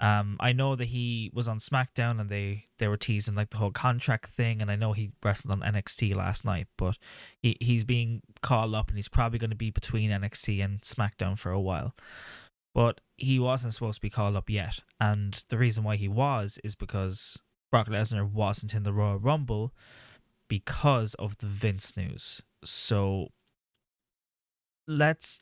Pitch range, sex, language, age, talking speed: 100-120 Hz, male, English, 10-29, 180 wpm